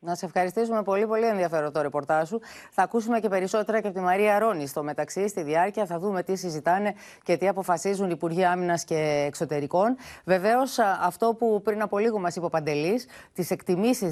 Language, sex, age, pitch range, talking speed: Greek, female, 30-49, 165-235 Hz, 200 wpm